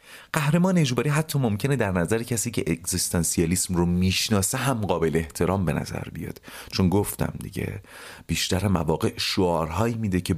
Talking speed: 145 wpm